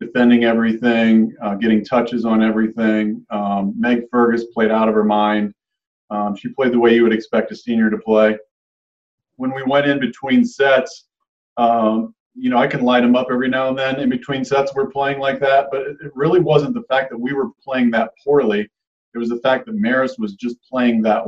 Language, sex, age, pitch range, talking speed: English, male, 40-59, 110-130 Hz, 210 wpm